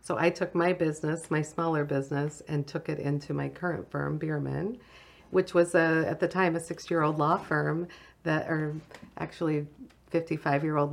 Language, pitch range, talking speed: English, 160-195 Hz, 165 wpm